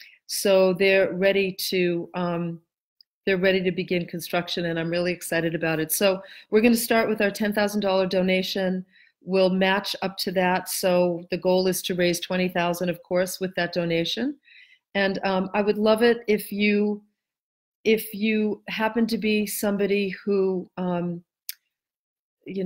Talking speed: 155 wpm